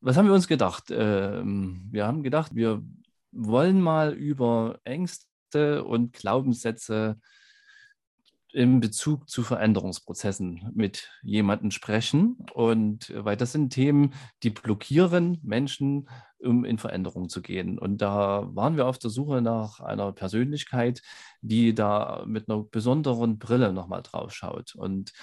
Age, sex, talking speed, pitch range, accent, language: 40-59, male, 130 wpm, 105-130 Hz, German, German